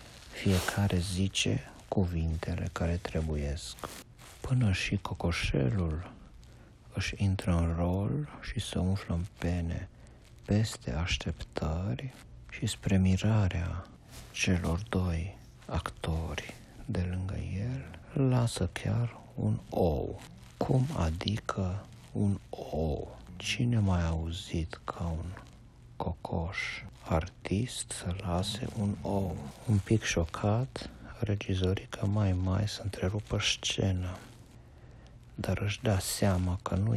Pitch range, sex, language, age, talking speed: 90-110 Hz, male, Romanian, 60-79, 100 wpm